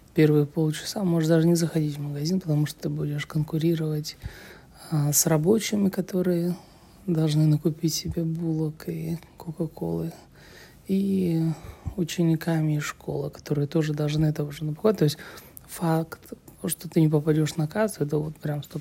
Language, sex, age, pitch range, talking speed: Russian, male, 20-39, 150-170 Hz, 145 wpm